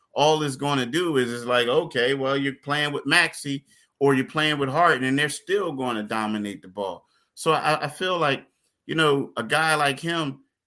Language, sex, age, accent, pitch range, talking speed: English, male, 30-49, American, 120-155 Hz, 215 wpm